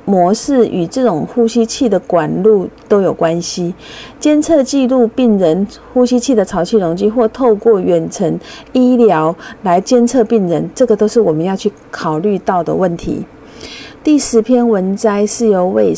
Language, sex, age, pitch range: Chinese, female, 50-69, 185-235 Hz